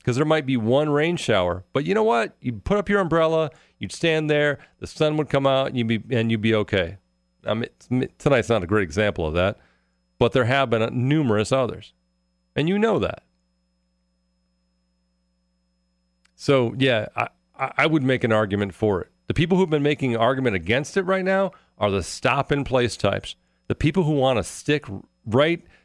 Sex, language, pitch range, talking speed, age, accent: male, English, 90-140 Hz, 190 wpm, 40-59, American